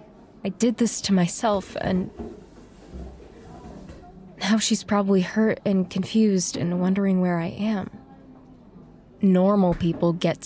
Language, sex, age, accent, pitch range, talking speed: English, female, 20-39, American, 185-220 Hz, 115 wpm